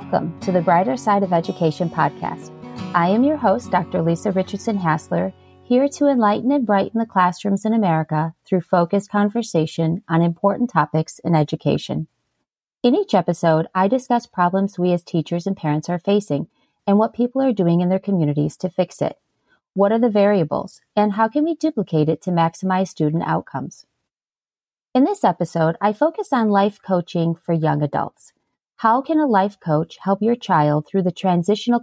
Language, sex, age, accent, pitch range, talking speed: English, female, 30-49, American, 165-215 Hz, 175 wpm